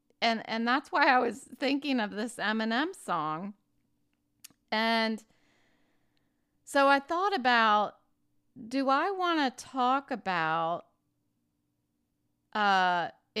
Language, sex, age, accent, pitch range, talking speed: English, female, 30-49, American, 190-245 Hz, 105 wpm